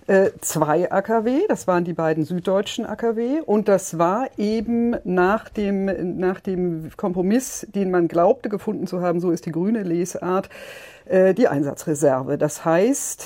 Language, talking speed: German, 145 wpm